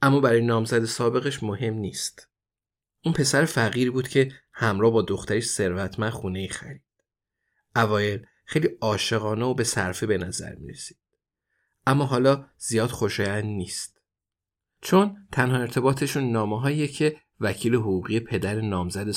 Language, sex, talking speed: Persian, male, 125 wpm